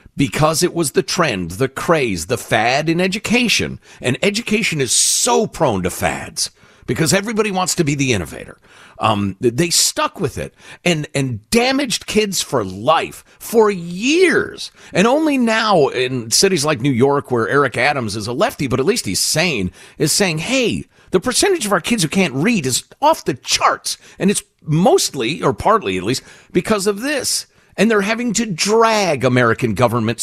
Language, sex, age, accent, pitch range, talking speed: English, male, 50-69, American, 125-210 Hz, 175 wpm